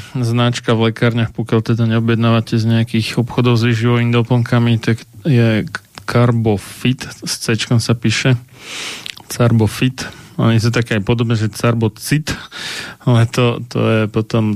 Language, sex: Slovak, male